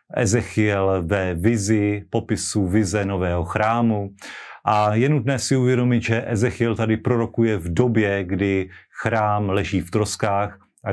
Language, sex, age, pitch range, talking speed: Slovak, male, 40-59, 100-115 Hz, 130 wpm